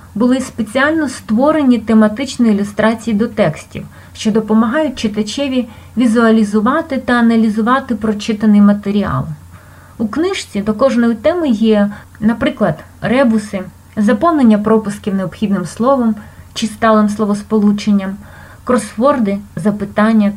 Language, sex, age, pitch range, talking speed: Ukrainian, female, 30-49, 205-255 Hz, 95 wpm